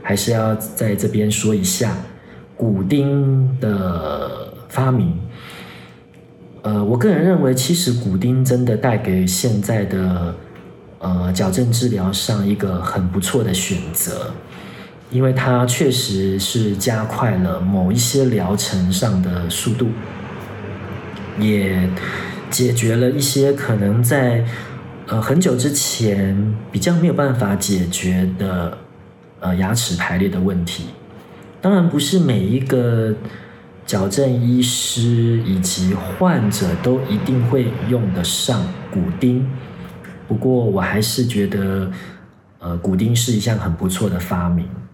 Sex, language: male, Chinese